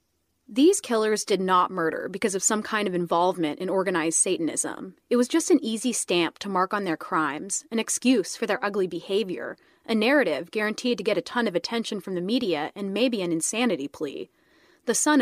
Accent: American